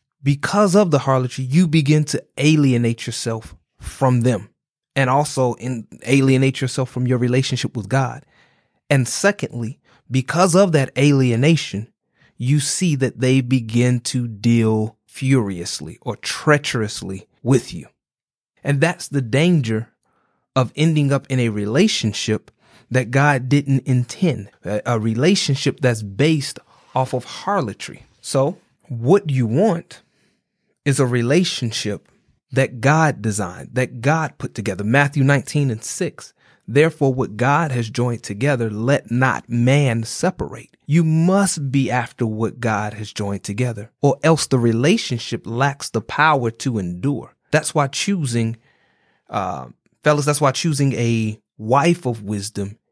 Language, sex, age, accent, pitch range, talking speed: English, male, 30-49, American, 115-145 Hz, 135 wpm